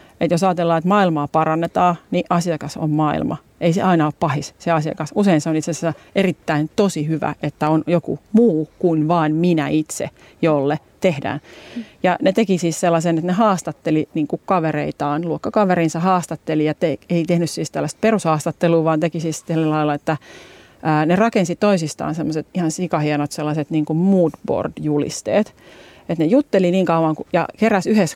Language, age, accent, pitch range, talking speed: Finnish, 40-59, native, 155-180 Hz, 160 wpm